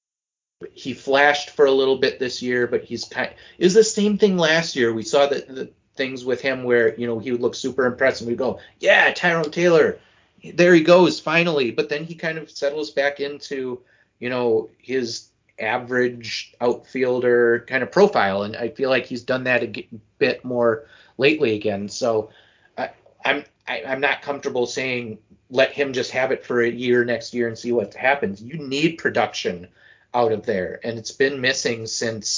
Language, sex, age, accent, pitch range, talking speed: English, male, 30-49, American, 120-145 Hz, 195 wpm